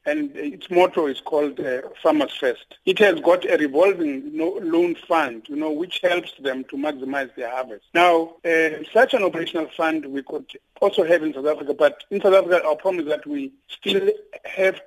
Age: 50-69